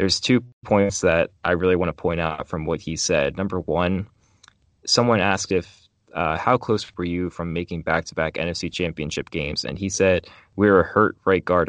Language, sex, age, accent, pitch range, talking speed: English, male, 20-39, American, 85-100 Hz, 210 wpm